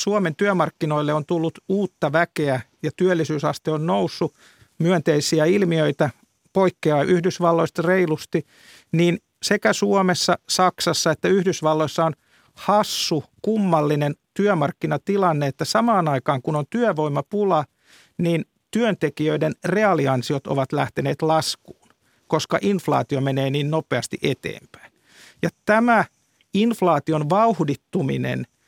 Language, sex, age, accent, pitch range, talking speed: Finnish, male, 50-69, native, 150-190 Hz, 100 wpm